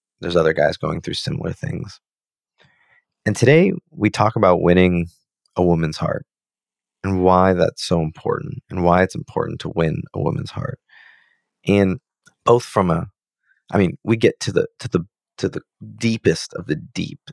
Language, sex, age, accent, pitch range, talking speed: English, male, 30-49, American, 90-130 Hz, 165 wpm